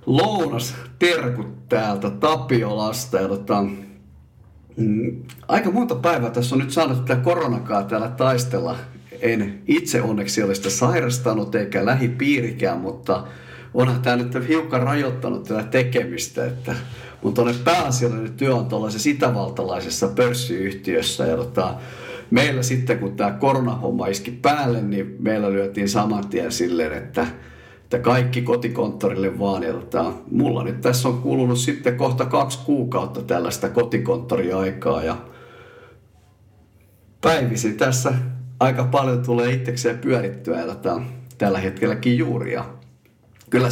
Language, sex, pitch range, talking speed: Finnish, male, 110-125 Hz, 115 wpm